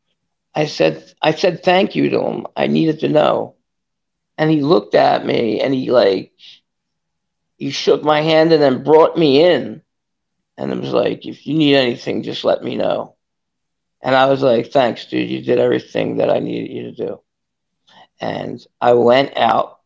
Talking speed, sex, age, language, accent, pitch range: 180 wpm, male, 40-59, English, American, 125-200 Hz